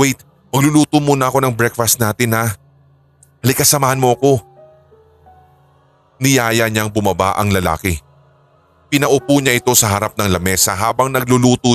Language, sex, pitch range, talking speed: Filipino, male, 95-130 Hz, 115 wpm